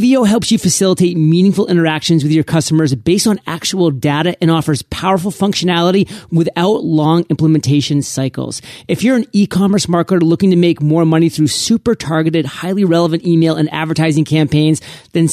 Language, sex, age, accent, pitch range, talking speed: English, male, 30-49, American, 155-190 Hz, 160 wpm